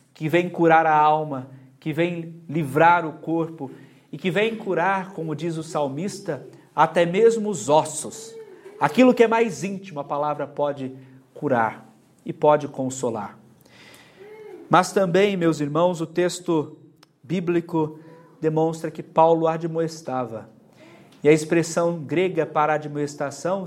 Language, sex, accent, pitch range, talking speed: Portuguese, male, Brazilian, 150-185 Hz, 130 wpm